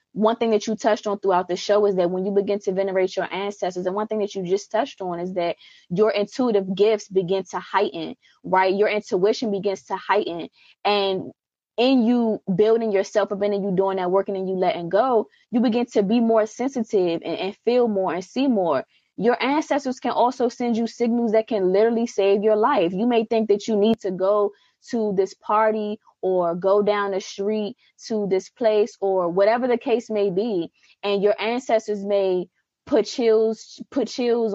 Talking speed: 195 wpm